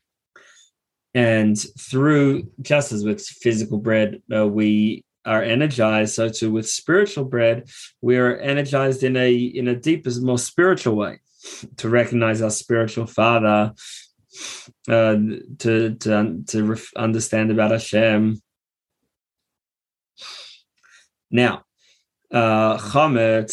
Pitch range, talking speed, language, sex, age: 110-130 Hz, 105 wpm, English, male, 20-39